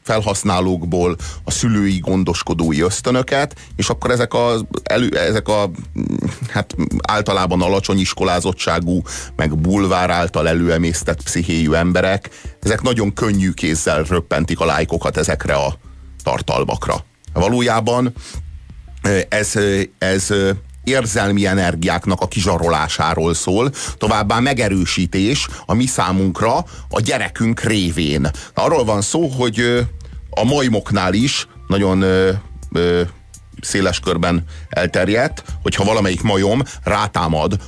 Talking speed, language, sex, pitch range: 100 wpm, Hungarian, male, 85-105 Hz